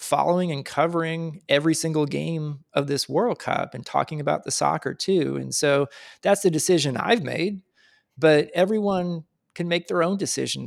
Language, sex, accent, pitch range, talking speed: English, male, American, 130-165 Hz, 170 wpm